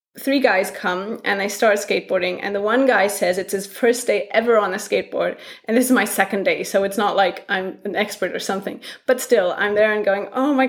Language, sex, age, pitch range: English, female, 20-39, 205-265 Hz